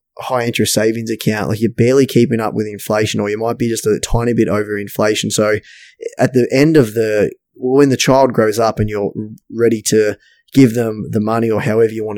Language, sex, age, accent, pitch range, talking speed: English, male, 20-39, Australian, 105-125 Hz, 215 wpm